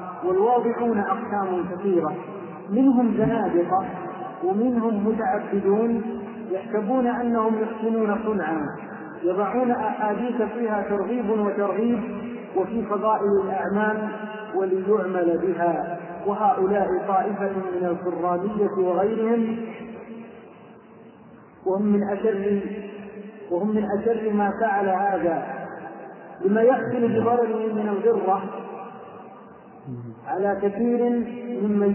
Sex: male